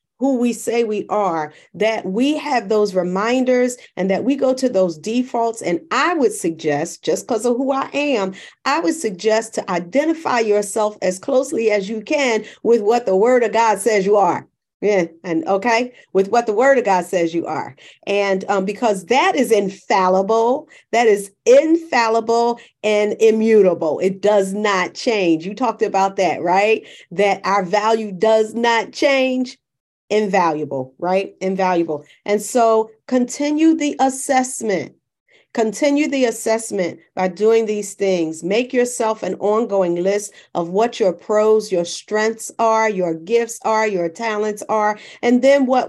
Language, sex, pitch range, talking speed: English, female, 195-245 Hz, 160 wpm